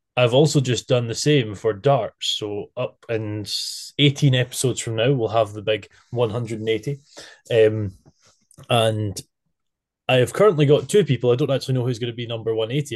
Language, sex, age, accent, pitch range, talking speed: English, male, 20-39, British, 110-145 Hz, 175 wpm